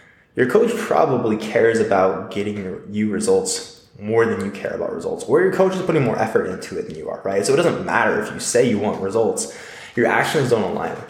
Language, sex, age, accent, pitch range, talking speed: English, male, 20-39, American, 100-125 Hz, 225 wpm